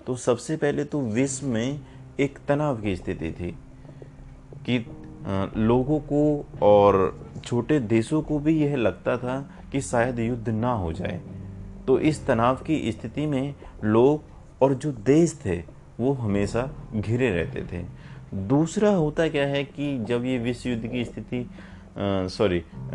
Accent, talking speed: native, 145 wpm